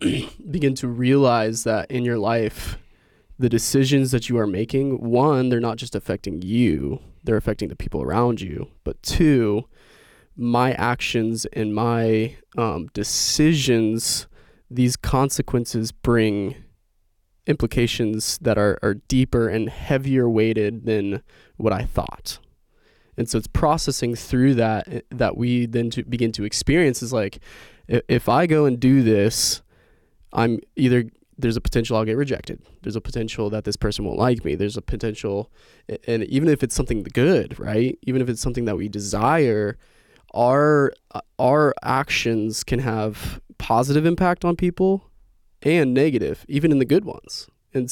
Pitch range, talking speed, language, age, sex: 110-130 Hz, 150 wpm, English, 20-39, male